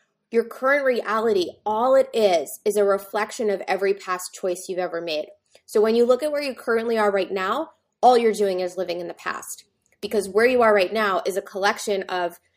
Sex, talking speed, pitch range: female, 215 wpm, 185-220 Hz